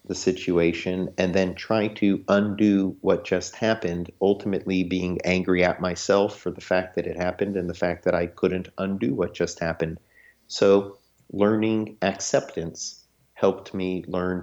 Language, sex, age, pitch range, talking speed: English, male, 50-69, 85-95 Hz, 155 wpm